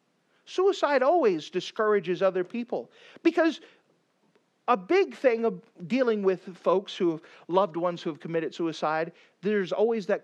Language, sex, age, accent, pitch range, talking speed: English, male, 50-69, American, 180-260 Hz, 140 wpm